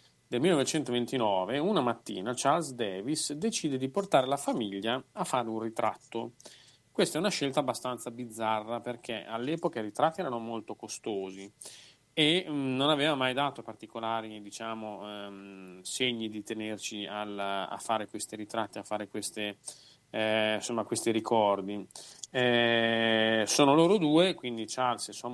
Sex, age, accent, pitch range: male, 30-49, native, 105-140 Hz